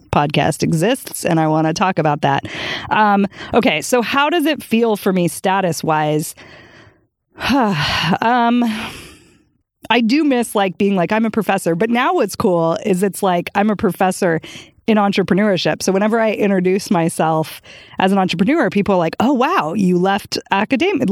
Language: English